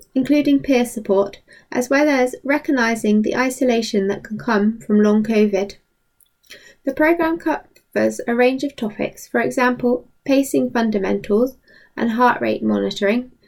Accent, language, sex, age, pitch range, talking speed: British, English, female, 20-39, 215-270 Hz, 135 wpm